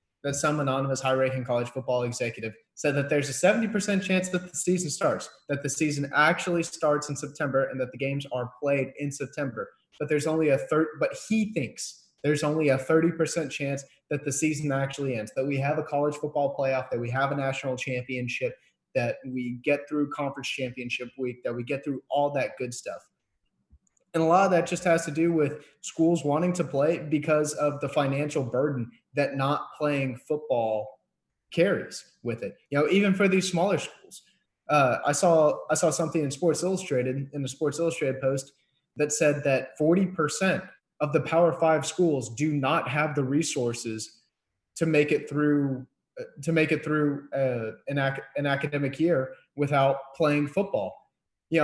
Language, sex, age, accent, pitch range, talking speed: English, male, 20-39, American, 135-160 Hz, 185 wpm